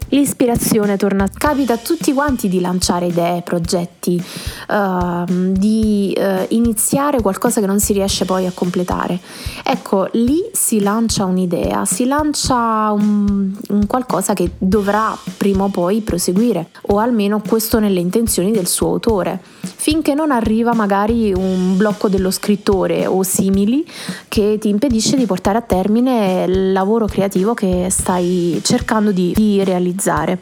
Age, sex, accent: 20-39, female, native